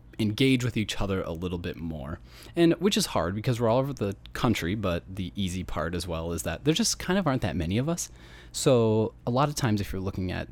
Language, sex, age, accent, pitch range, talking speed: English, male, 20-39, American, 85-120 Hz, 250 wpm